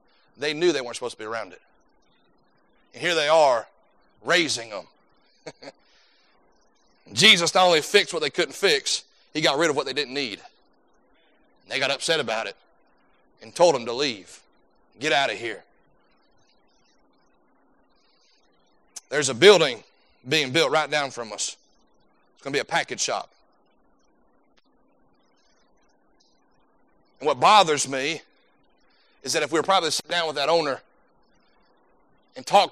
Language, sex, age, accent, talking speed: English, male, 40-59, American, 145 wpm